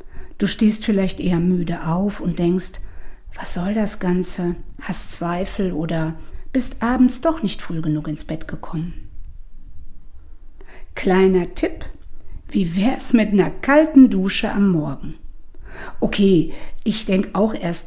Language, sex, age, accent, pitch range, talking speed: German, female, 50-69, German, 160-225 Hz, 130 wpm